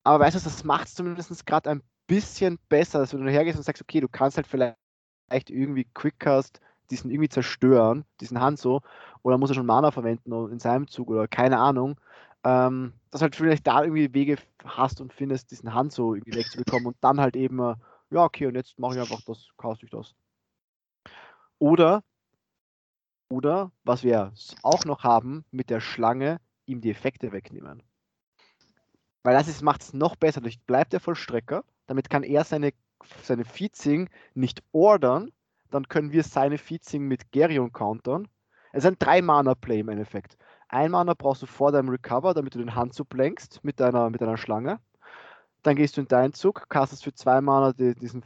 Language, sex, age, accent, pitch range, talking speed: German, male, 20-39, German, 120-150 Hz, 185 wpm